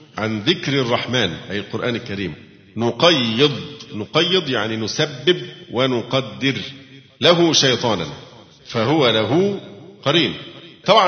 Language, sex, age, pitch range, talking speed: Arabic, male, 50-69, 110-150 Hz, 90 wpm